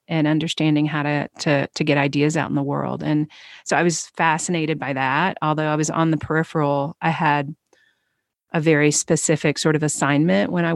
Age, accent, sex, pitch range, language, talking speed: 30-49, American, female, 145-160 Hz, English, 190 wpm